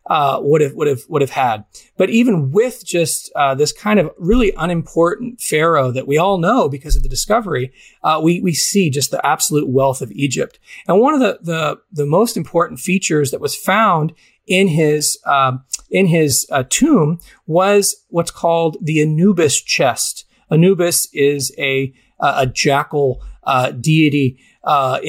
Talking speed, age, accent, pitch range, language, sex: 170 wpm, 40-59, American, 145-190 Hz, English, male